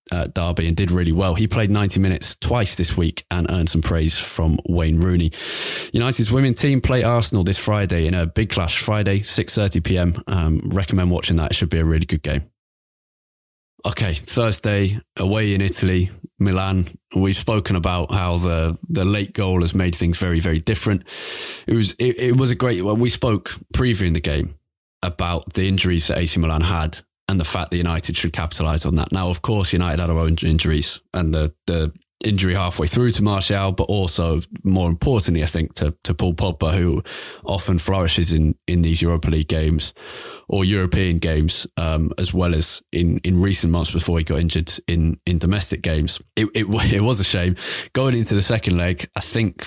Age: 20-39